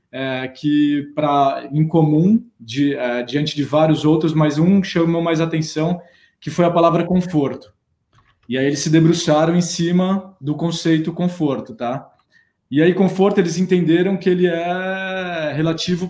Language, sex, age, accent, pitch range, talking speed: Portuguese, male, 20-39, Brazilian, 130-160 Hz, 155 wpm